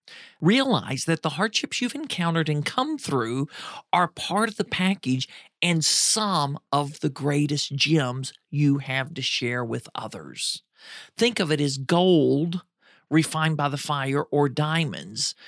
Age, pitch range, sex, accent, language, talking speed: 50-69, 145-190 Hz, male, American, English, 145 wpm